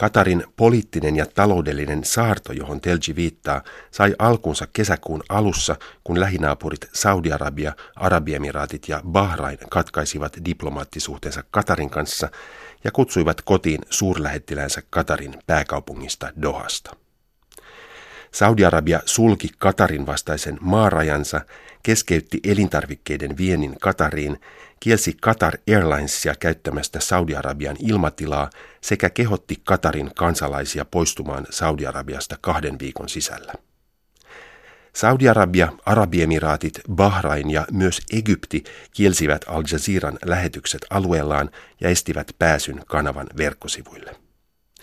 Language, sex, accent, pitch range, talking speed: Finnish, male, native, 75-95 Hz, 90 wpm